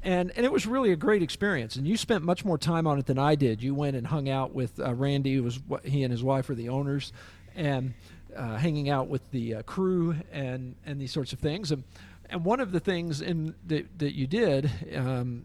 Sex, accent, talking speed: male, American, 245 wpm